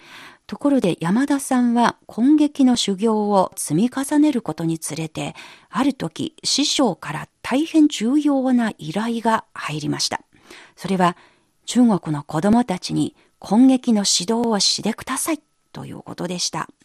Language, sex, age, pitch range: Japanese, female, 40-59, 175-260 Hz